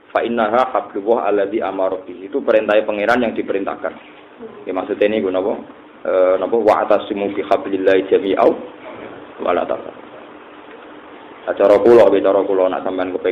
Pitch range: 100-125 Hz